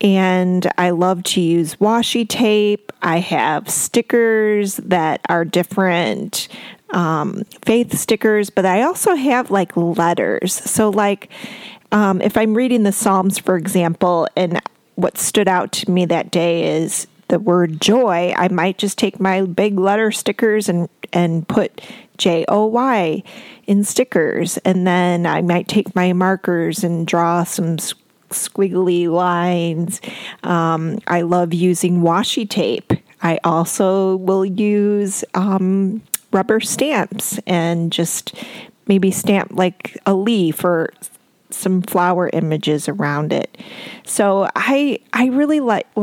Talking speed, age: 135 wpm, 30-49